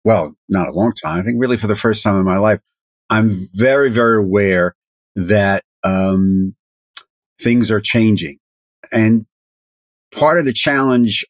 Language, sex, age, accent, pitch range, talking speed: English, male, 50-69, American, 100-120 Hz, 155 wpm